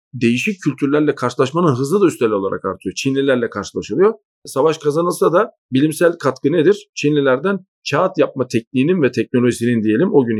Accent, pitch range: native, 125-170 Hz